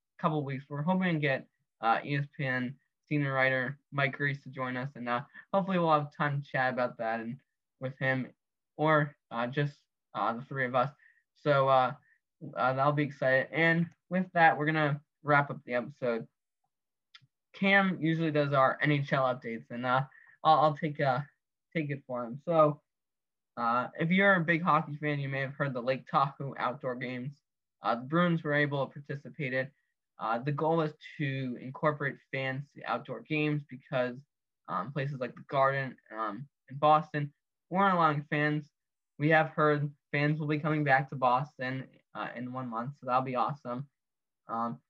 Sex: male